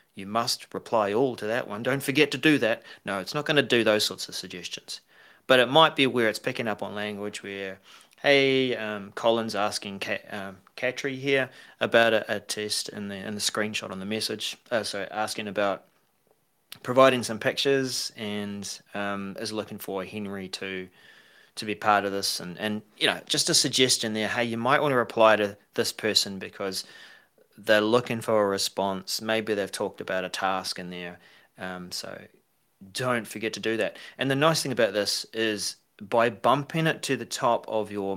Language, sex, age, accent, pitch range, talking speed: English, male, 30-49, Australian, 100-125 Hz, 195 wpm